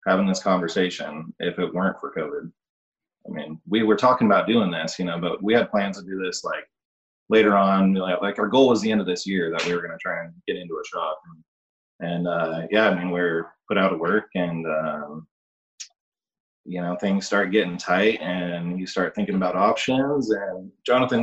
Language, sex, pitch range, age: English, male, 95-125 Hz, 20-39